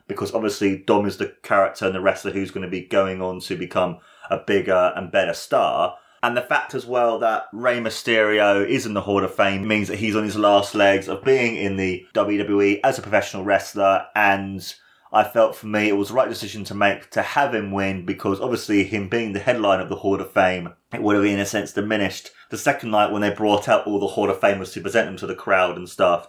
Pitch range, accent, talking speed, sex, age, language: 100-120 Hz, British, 240 wpm, male, 20-39, English